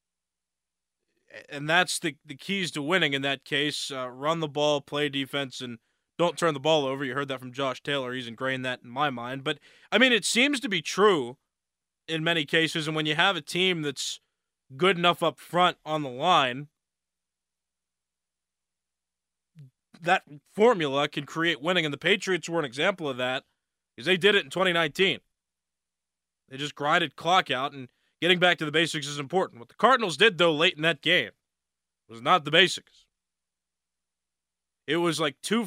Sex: male